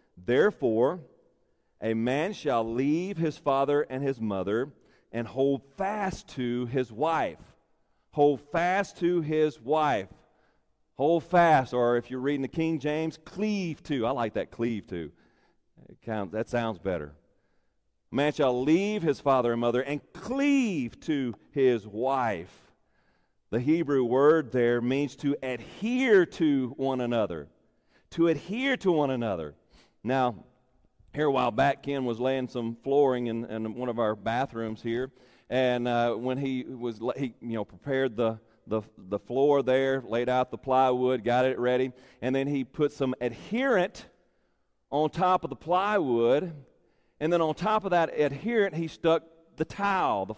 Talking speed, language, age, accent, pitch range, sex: 155 wpm, English, 40-59, American, 120-165 Hz, male